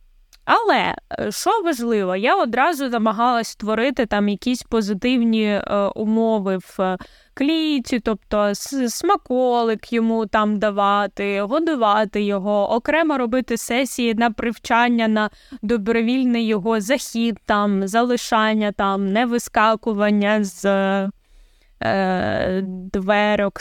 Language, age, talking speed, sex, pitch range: Ukrainian, 20-39, 95 wpm, female, 205-250 Hz